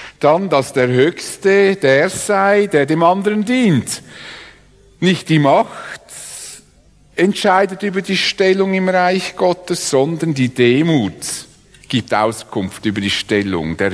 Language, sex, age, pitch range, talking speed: English, male, 60-79, 135-200 Hz, 125 wpm